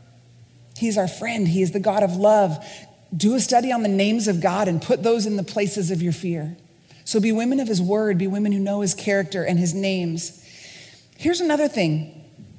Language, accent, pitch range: English, American, 185-295 Hz